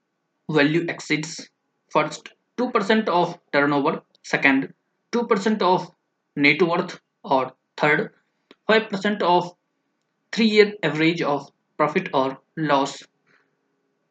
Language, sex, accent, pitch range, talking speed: English, male, Indian, 150-195 Hz, 90 wpm